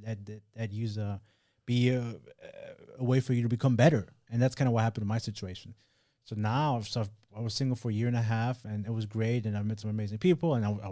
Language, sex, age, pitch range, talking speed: English, male, 20-39, 105-120 Hz, 260 wpm